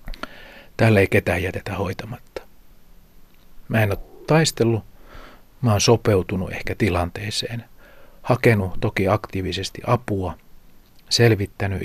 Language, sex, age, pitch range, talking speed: Finnish, male, 50-69, 95-115 Hz, 95 wpm